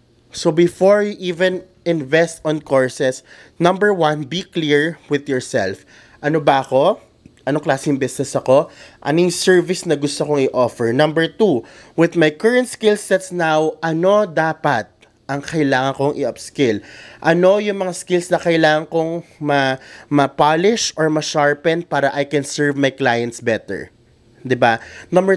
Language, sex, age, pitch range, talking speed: Filipino, male, 20-39, 130-165 Hz, 140 wpm